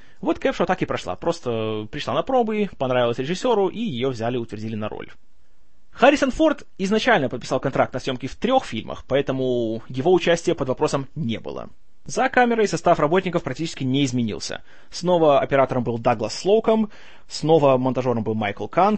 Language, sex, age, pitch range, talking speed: Russian, male, 20-39, 125-175 Hz, 165 wpm